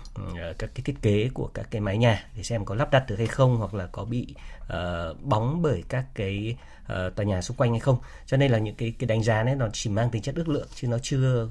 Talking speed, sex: 270 wpm, male